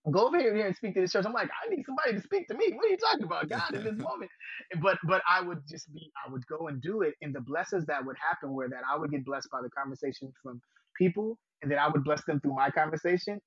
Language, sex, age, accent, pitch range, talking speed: English, male, 20-39, American, 135-175 Hz, 285 wpm